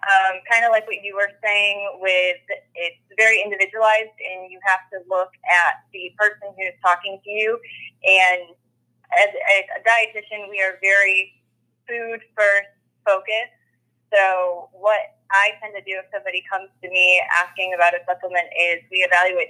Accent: American